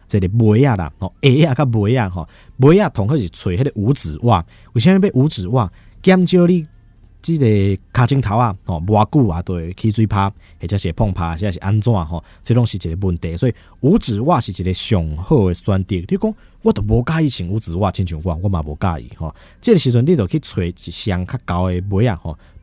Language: Chinese